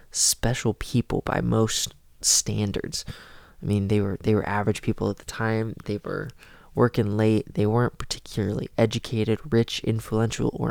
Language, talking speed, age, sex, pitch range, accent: English, 150 wpm, 20-39, male, 105-125 Hz, American